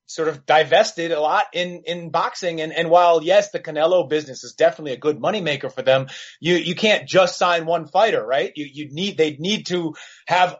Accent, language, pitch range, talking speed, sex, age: American, English, 160-205 Hz, 220 wpm, male, 30-49